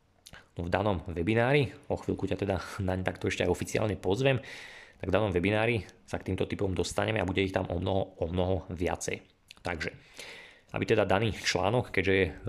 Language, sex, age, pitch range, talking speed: Slovak, male, 20-39, 90-105 Hz, 190 wpm